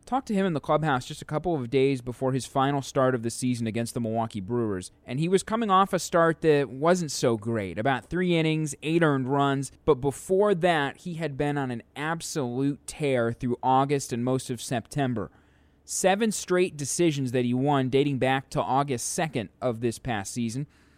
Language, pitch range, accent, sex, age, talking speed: English, 125-165 Hz, American, male, 20-39, 200 wpm